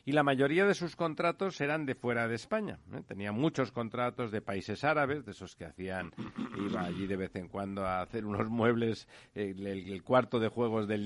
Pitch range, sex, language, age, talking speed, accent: 110-150 Hz, male, Spanish, 50-69, 210 wpm, Spanish